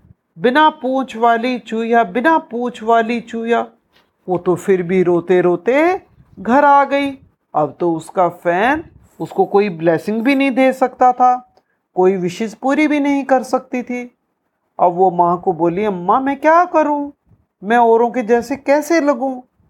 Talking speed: 160 wpm